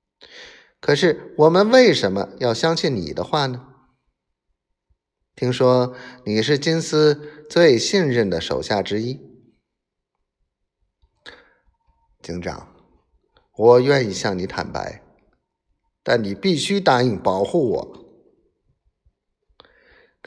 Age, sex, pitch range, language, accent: 50-69, male, 115-165 Hz, Chinese, native